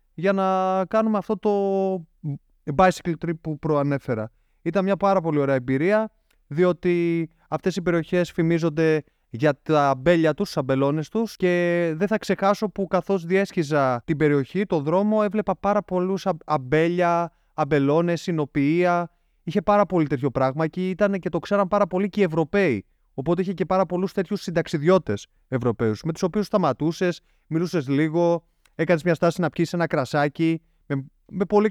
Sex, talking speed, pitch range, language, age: male, 155 wpm, 150-190 Hz, Greek, 20-39